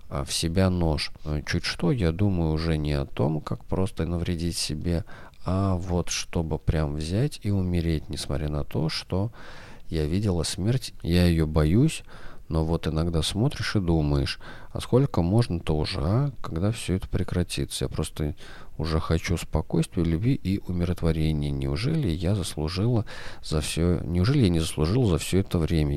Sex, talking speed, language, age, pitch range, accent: male, 155 wpm, Russian, 40-59, 80-95 Hz, native